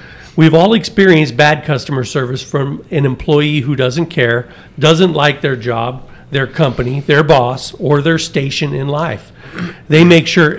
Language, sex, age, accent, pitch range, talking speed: English, male, 50-69, American, 135-170 Hz, 160 wpm